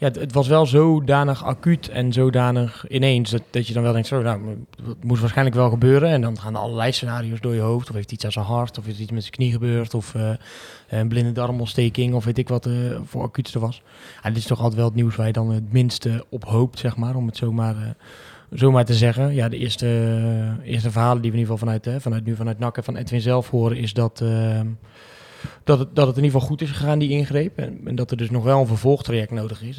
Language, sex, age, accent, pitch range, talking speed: Dutch, male, 20-39, Dutch, 115-130 Hz, 260 wpm